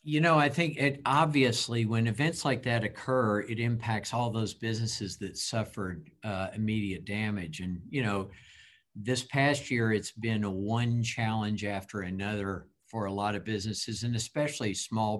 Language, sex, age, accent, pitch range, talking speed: English, male, 50-69, American, 105-125 Hz, 165 wpm